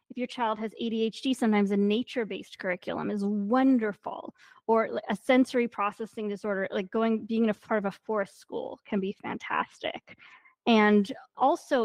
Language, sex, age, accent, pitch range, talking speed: English, female, 20-39, American, 205-245 Hz, 160 wpm